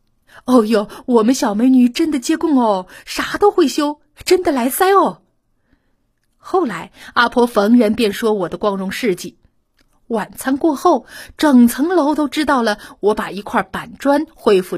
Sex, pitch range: female, 195-275 Hz